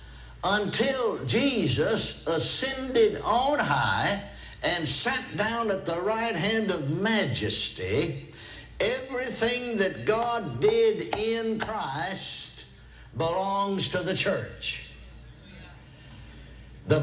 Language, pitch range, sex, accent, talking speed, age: English, 175-220 Hz, male, American, 90 wpm, 60-79